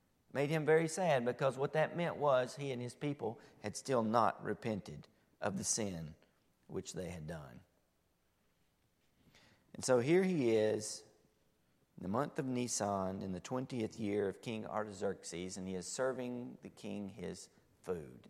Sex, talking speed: male, 160 wpm